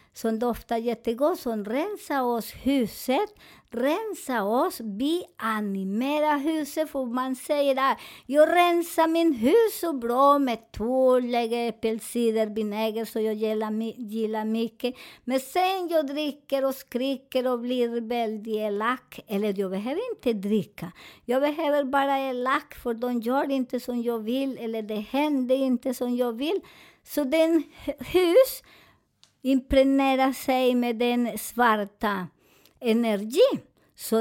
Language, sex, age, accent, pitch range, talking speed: Swedish, male, 50-69, American, 225-285 Hz, 130 wpm